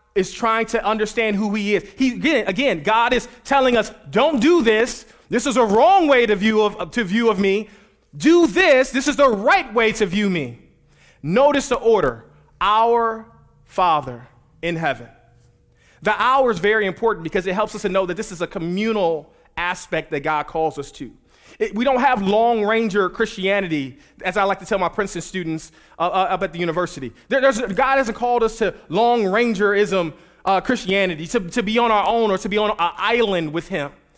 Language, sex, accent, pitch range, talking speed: English, male, American, 190-255 Hz, 200 wpm